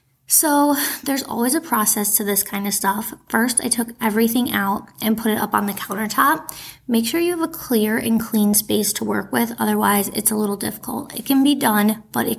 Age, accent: 20-39, American